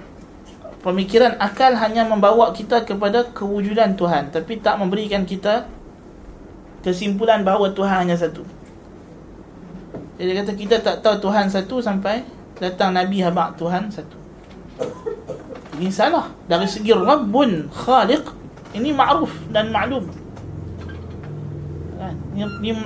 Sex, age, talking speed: male, 20-39, 110 wpm